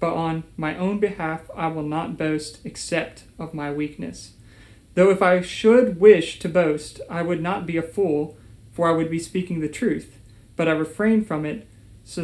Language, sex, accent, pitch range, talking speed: English, male, American, 150-180 Hz, 190 wpm